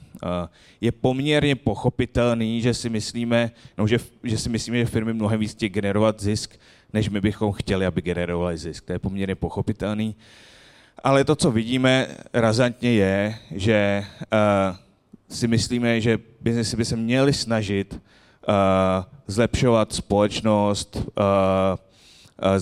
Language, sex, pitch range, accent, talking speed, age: Czech, male, 100-120 Hz, native, 130 wpm, 30-49